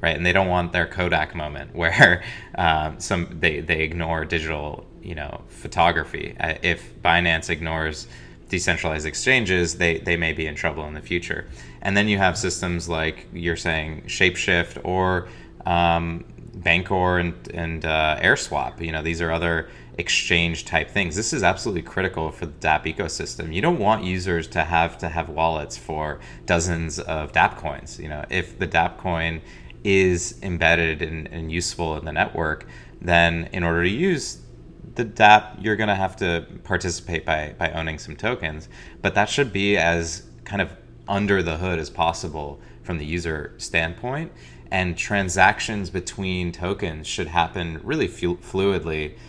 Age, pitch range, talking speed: 20-39, 80-90 Hz, 160 wpm